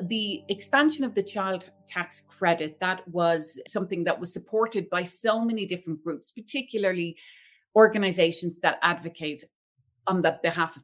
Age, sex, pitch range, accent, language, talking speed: 30-49, female, 165-205 Hz, Irish, English, 145 wpm